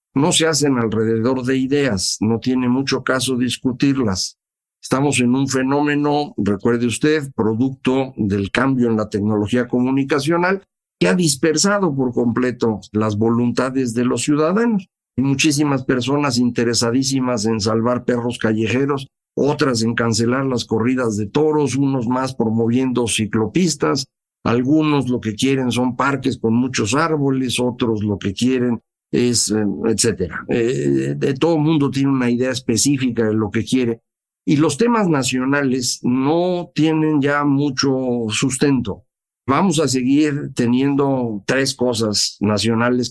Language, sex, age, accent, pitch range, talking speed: Spanish, male, 50-69, Mexican, 115-145 Hz, 135 wpm